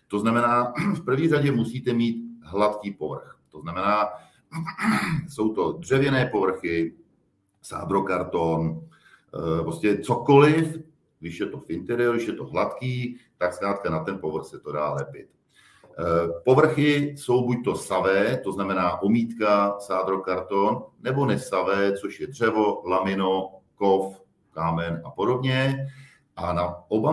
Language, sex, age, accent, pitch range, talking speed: Czech, male, 40-59, native, 100-130 Hz, 125 wpm